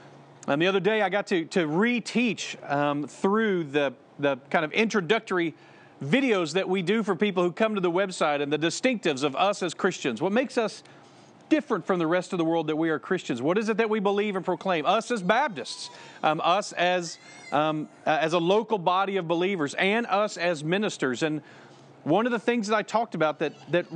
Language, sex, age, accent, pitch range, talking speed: English, male, 40-59, American, 175-220 Hz, 210 wpm